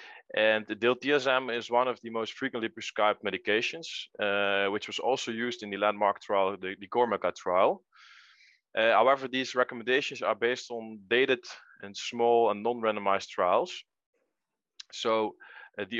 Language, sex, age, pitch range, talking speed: English, male, 20-39, 105-125 Hz, 145 wpm